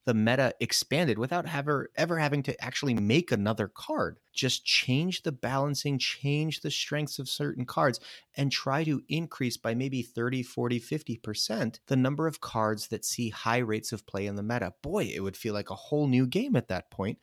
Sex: male